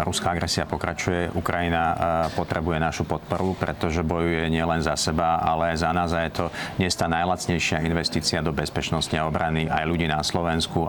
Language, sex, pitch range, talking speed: Slovak, male, 85-95 Hz, 165 wpm